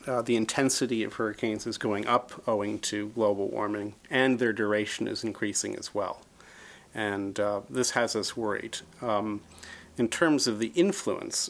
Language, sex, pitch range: English, male, 110-130 Hz